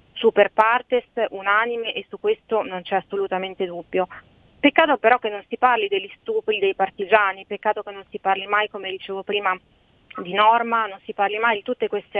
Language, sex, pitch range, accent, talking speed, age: Italian, female, 200-245 Hz, native, 185 wpm, 30-49